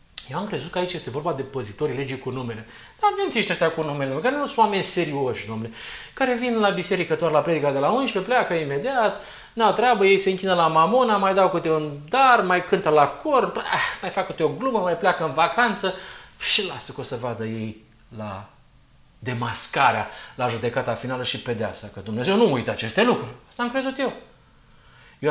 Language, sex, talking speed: Romanian, male, 205 wpm